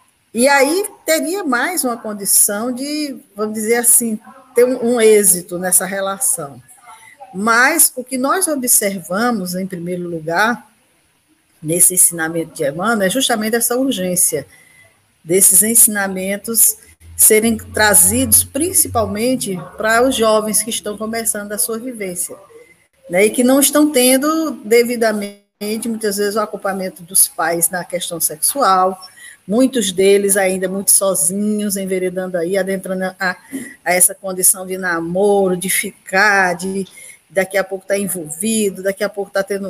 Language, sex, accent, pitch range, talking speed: Portuguese, female, Brazilian, 180-235 Hz, 135 wpm